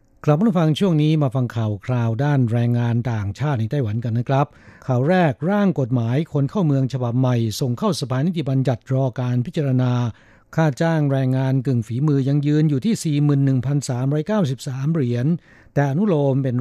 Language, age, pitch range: Thai, 60-79, 125-150 Hz